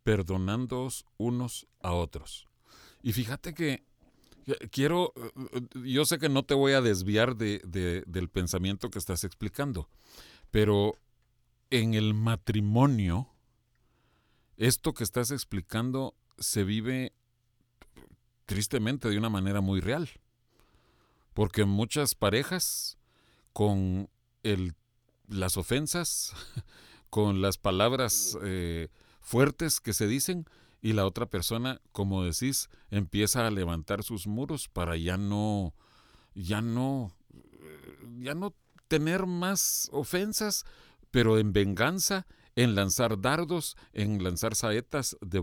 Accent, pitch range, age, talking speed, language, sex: Mexican, 100-125 Hz, 40-59, 110 wpm, Spanish, male